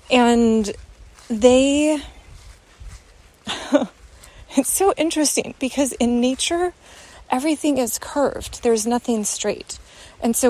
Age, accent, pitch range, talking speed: 30-49, American, 200-275 Hz, 90 wpm